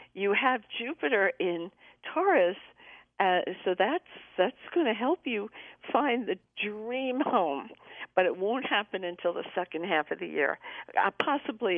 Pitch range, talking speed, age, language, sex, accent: 175-285 Hz, 155 wpm, 50-69, English, female, American